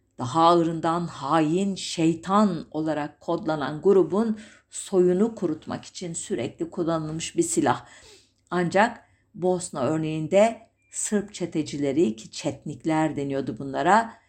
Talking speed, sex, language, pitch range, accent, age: 95 wpm, female, German, 165-205 Hz, Turkish, 50-69